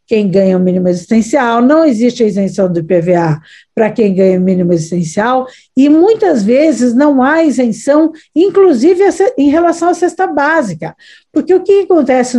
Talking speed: 160 wpm